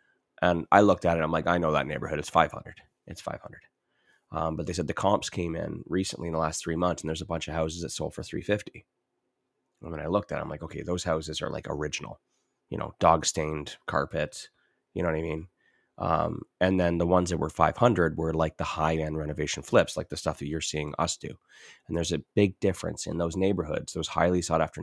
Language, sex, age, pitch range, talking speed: English, male, 30-49, 80-90 Hz, 230 wpm